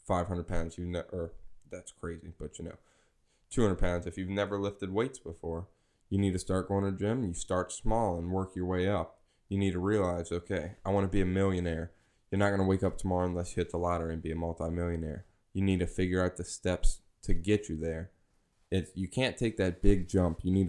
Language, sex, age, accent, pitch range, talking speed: English, male, 10-29, American, 85-100 Hz, 235 wpm